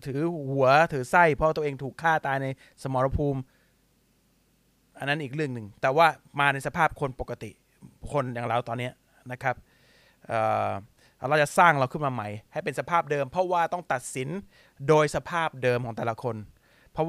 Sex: male